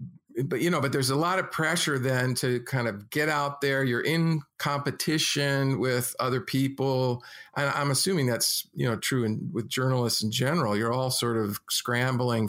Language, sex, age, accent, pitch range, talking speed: English, male, 50-69, American, 120-140 Hz, 185 wpm